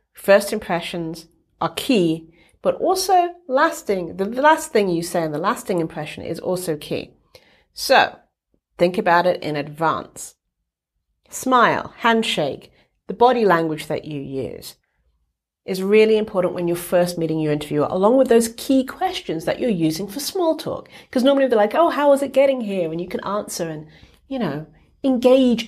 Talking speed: 165 wpm